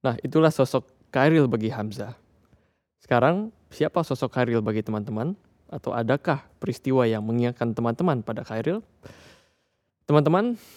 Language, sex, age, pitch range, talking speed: Indonesian, male, 20-39, 115-145 Hz, 115 wpm